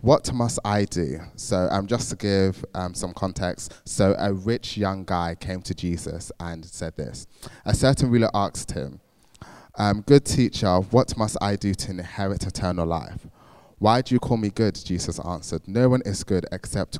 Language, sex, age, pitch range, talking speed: English, male, 20-39, 90-105 Hz, 185 wpm